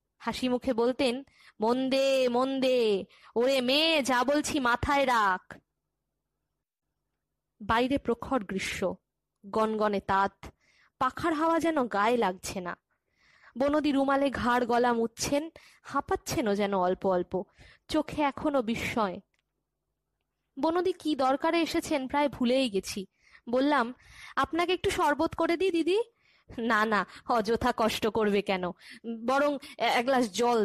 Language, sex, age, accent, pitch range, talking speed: Bengali, female, 20-39, native, 220-295 Hz, 95 wpm